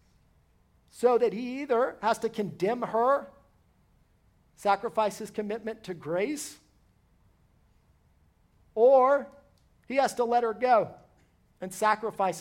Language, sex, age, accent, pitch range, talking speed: English, male, 50-69, American, 160-220 Hz, 105 wpm